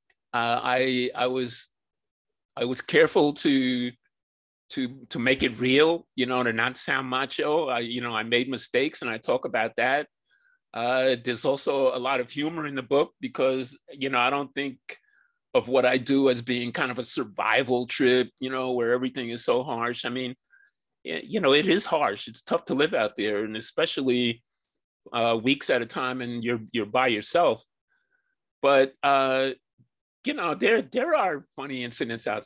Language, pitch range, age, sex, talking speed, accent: English, 120-140 Hz, 30-49, male, 185 wpm, American